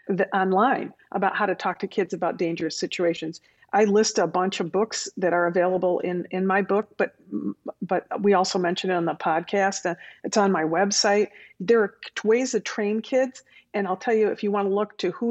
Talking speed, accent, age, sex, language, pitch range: 210 wpm, American, 50-69, female, English, 175-210 Hz